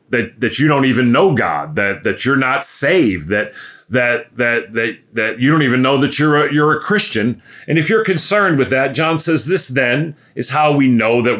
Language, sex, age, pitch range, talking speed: English, male, 40-59, 115-150 Hz, 220 wpm